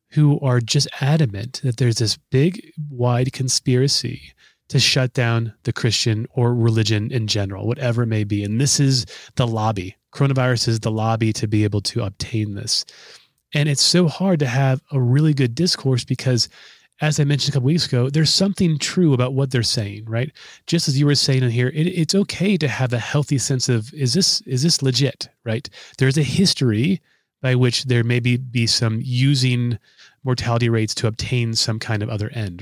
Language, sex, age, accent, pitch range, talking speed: English, male, 30-49, American, 115-145 Hz, 190 wpm